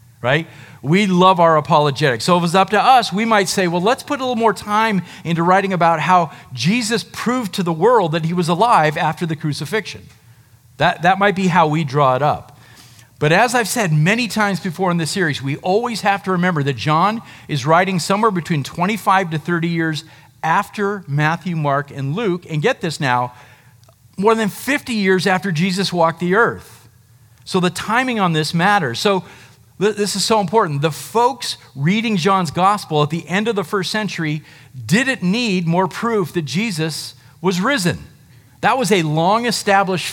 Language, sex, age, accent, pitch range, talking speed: English, male, 50-69, American, 145-200 Hz, 185 wpm